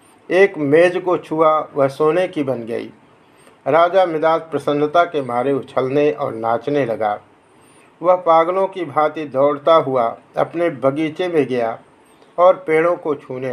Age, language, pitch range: 60-79, Hindi, 140-175 Hz